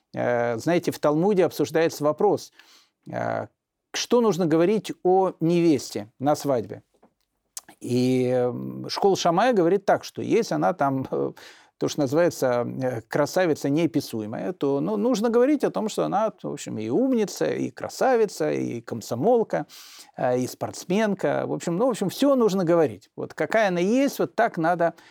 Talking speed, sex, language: 140 wpm, male, Russian